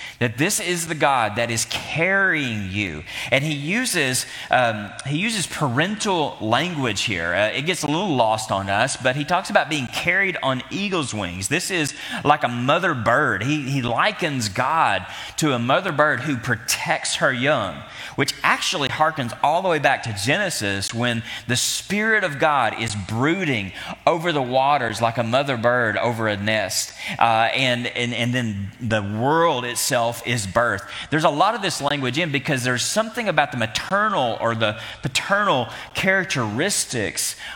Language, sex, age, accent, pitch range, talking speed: English, male, 30-49, American, 115-155 Hz, 170 wpm